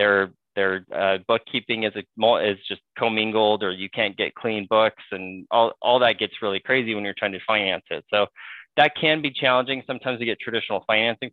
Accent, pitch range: American, 105-120 Hz